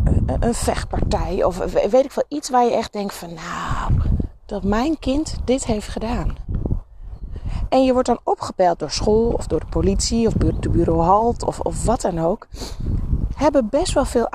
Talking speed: 180 wpm